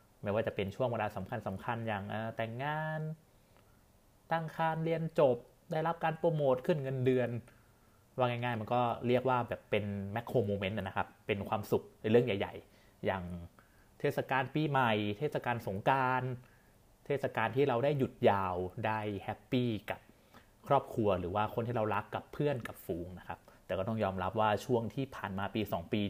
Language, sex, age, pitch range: Thai, male, 30-49, 100-125 Hz